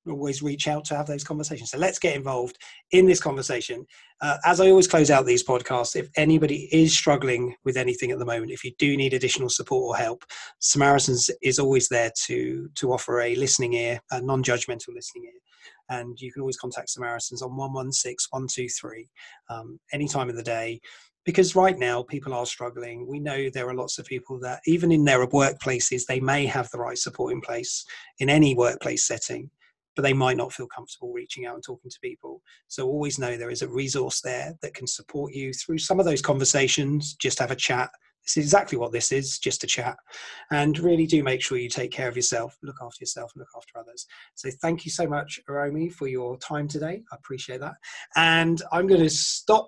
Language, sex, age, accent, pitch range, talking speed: English, male, 30-49, British, 125-165 Hz, 210 wpm